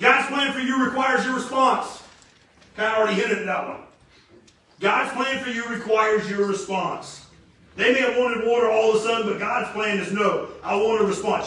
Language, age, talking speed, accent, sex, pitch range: English, 40-59, 215 wpm, American, male, 170-230 Hz